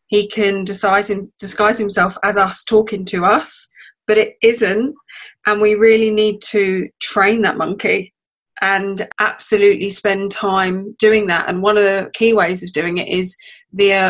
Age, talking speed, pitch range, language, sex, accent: 20-39, 160 wpm, 190-215 Hz, English, female, British